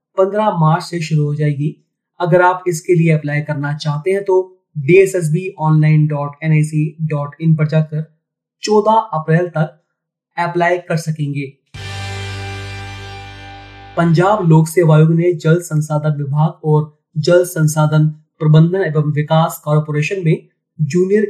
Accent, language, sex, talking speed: native, Hindi, male, 115 wpm